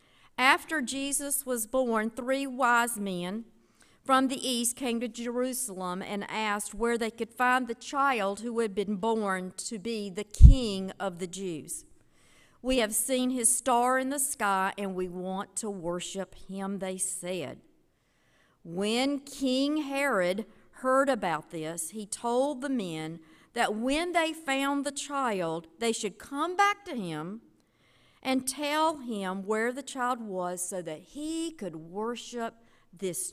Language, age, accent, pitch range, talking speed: English, 50-69, American, 185-260 Hz, 150 wpm